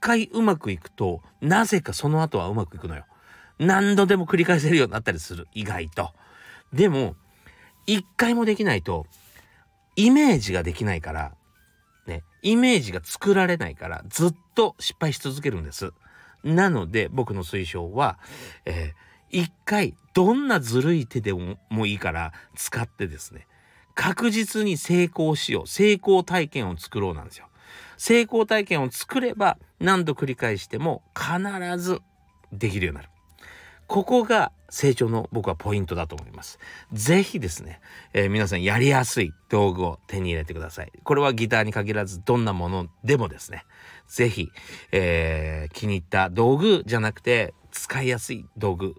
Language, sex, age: Japanese, male, 40-59